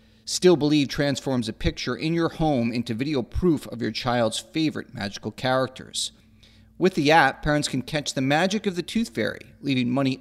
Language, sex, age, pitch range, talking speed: English, male, 40-59, 110-150 Hz, 180 wpm